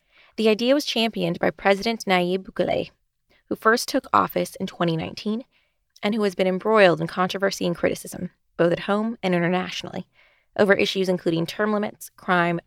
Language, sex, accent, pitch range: English, female, American, 175-225 Hz